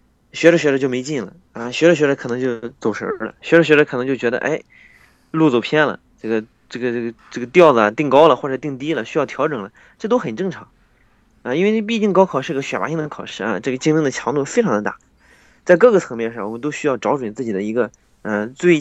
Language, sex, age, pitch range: Chinese, male, 20-39, 120-165 Hz